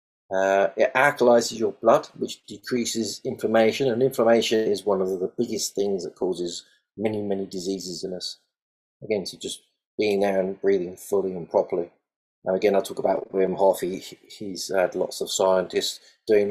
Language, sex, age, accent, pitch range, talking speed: English, male, 30-49, British, 95-125 Hz, 170 wpm